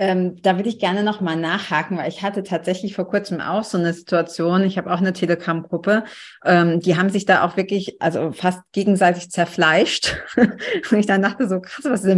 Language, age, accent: German, 30-49, German